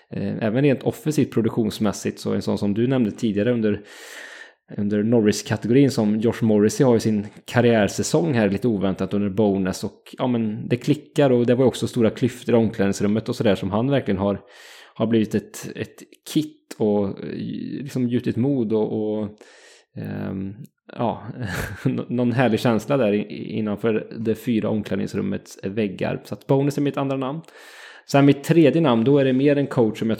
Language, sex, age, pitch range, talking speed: English, male, 20-39, 105-125 Hz, 165 wpm